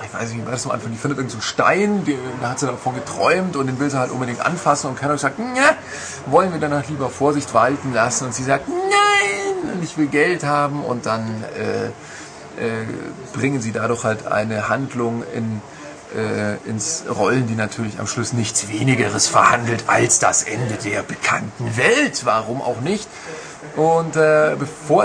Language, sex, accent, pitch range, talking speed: German, male, German, 120-155 Hz, 185 wpm